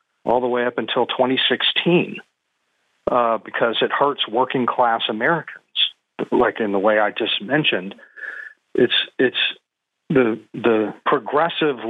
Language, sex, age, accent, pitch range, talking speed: English, male, 40-59, American, 110-135 Hz, 125 wpm